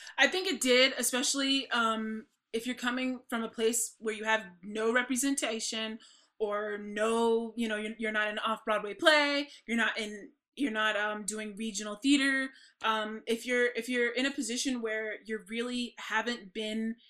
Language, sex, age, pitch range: English, female, 20-39, 220-255 Hz